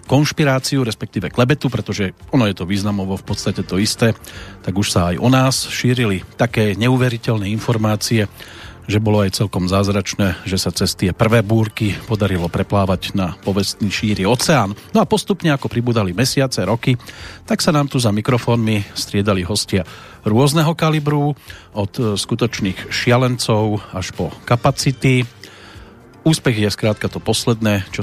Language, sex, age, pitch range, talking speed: Slovak, male, 40-59, 100-125 Hz, 145 wpm